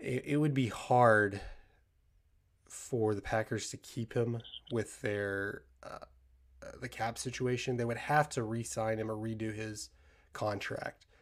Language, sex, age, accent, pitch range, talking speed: English, male, 20-39, American, 100-115 Hz, 140 wpm